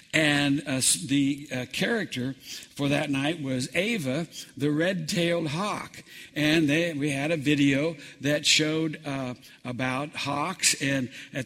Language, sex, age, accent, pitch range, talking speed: English, male, 60-79, American, 125-150 Hz, 135 wpm